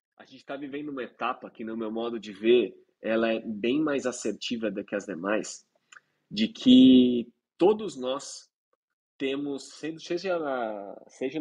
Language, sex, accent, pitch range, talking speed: Portuguese, male, Brazilian, 115-175 Hz, 155 wpm